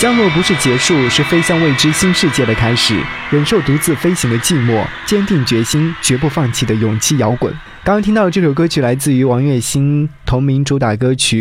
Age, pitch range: 20-39, 115-160 Hz